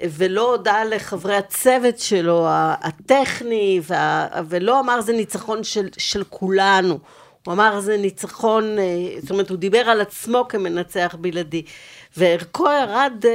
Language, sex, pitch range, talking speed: Hebrew, female, 185-230 Hz, 125 wpm